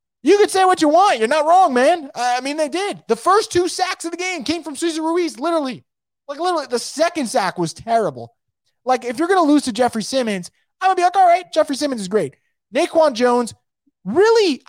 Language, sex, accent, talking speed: English, male, American, 230 wpm